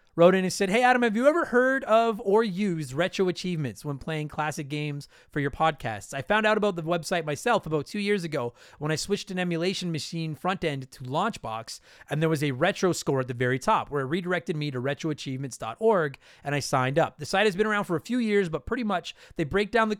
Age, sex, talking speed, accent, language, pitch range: 30-49, male, 235 wpm, American, English, 145-190 Hz